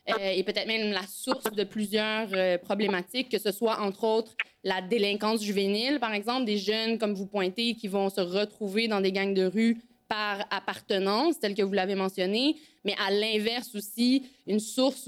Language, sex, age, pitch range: French, female, 20-39, 210-280 Hz